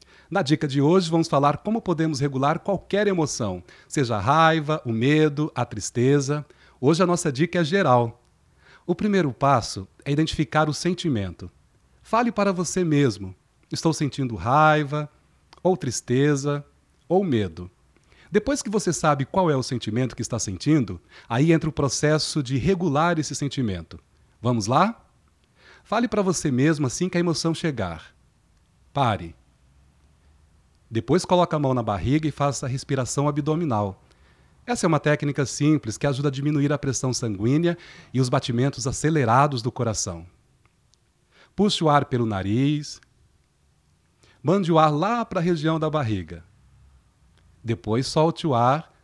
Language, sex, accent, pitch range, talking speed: Portuguese, male, Brazilian, 115-160 Hz, 150 wpm